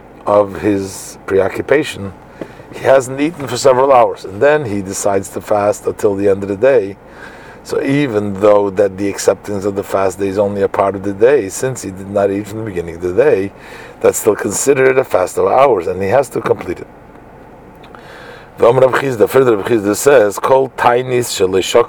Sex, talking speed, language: male, 195 wpm, English